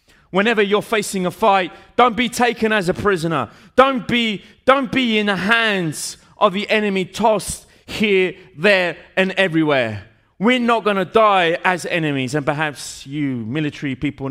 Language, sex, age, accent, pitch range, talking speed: Italian, male, 30-49, British, 125-190 Hz, 160 wpm